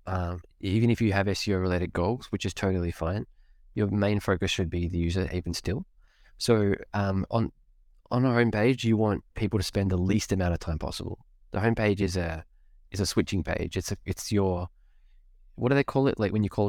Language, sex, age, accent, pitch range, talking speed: English, male, 20-39, Australian, 90-105 Hz, 210 wpm